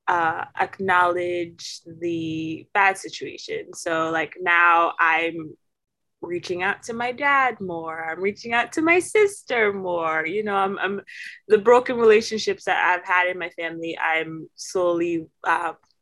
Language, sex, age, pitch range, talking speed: English, female, 20-39, 165-200 Hz, 140 wpm